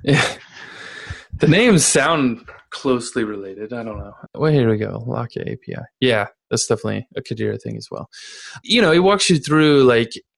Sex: male